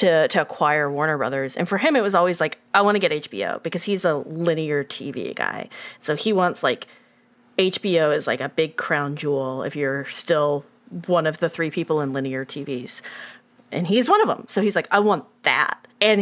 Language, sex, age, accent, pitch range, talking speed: English, female, 30-49, American, 155-205 Hz, 210 wpm